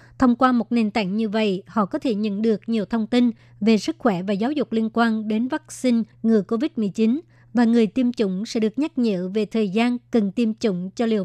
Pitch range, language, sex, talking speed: 210-240 Hz, Vietnamese, male, 230 wpm